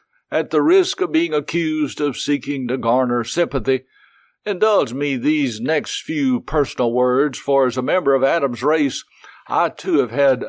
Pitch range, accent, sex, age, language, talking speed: 130-150 Hz, American, male, 60-79, English, 165 wpm